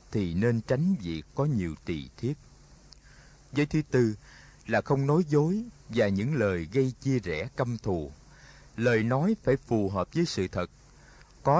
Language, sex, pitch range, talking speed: Vietnamese, male, 110-155 Hz, 165 wpm